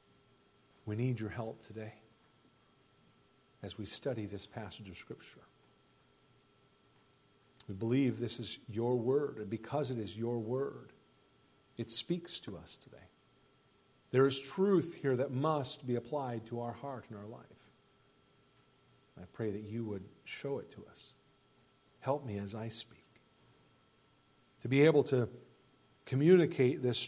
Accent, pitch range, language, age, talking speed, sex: American, 110-135 Hz, English, 50-69, 140 wpm, male